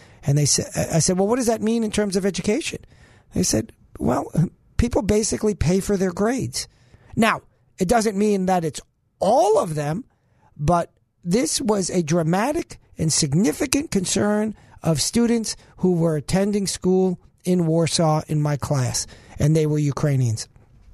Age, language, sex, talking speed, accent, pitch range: 50-69, English, male, 160 wpm, American, 130-200 Hz